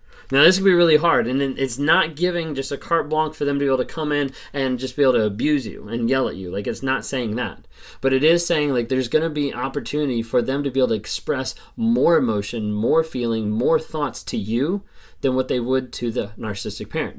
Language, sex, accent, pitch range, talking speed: English, male, American, 115-150 Hz, 250 wpm